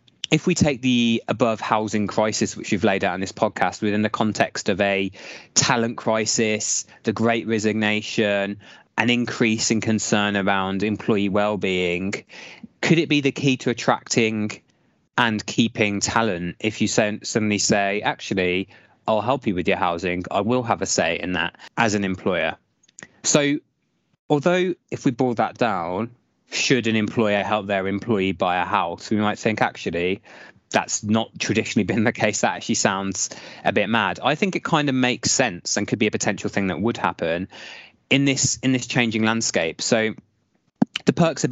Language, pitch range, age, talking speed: English, 100-120 Hz, 20-39, 175 wpm